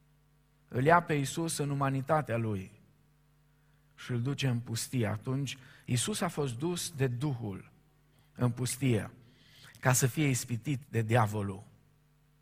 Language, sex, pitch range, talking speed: Romanian, male, 135-180 Hz, 130 wpm